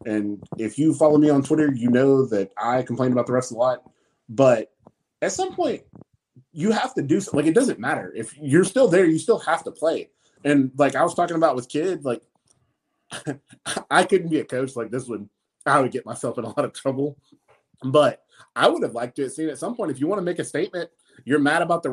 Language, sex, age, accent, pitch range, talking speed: English, male, 30-49, American, 120-160 Hz, 240 wpm